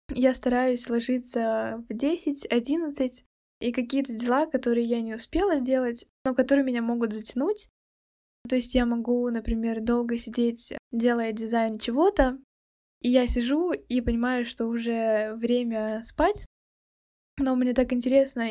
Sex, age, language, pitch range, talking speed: female, 10-29, Russian, 235-270 Hz, 135 wpm